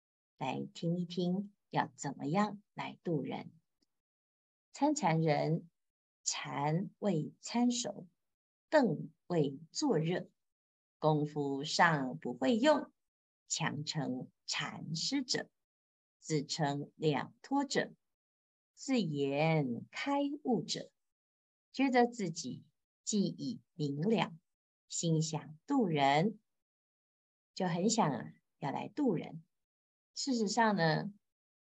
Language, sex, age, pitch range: Chinese, female, 50-69, 150-215 Hz